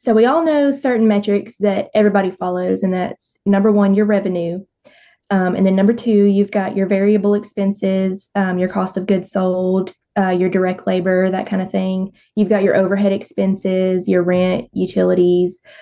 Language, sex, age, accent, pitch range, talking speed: English, female, 20-39, American, 185-210 Hz, 180 wpm